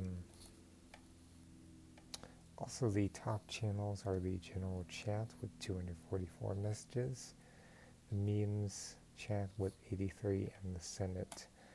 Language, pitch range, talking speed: English, 90-105 Hz, 95 wpm